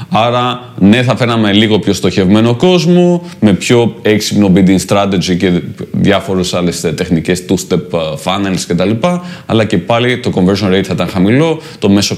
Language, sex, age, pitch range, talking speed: Greek, male, 20-39, 95-125 Hz, 165 wpm